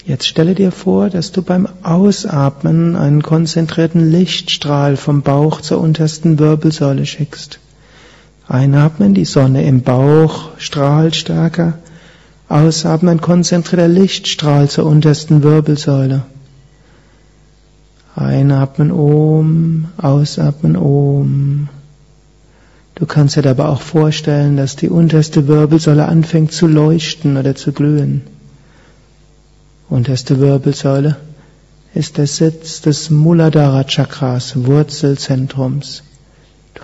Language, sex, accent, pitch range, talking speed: German, male, German, 140-160 Hz, 95 wpm